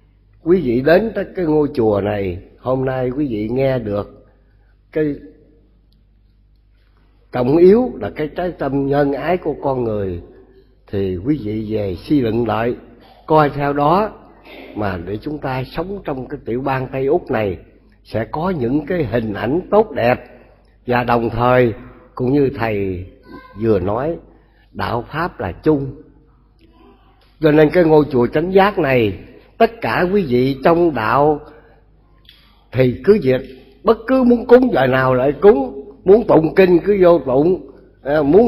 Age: 60-79